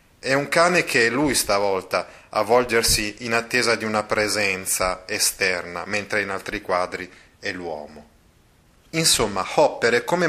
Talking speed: 145 wpm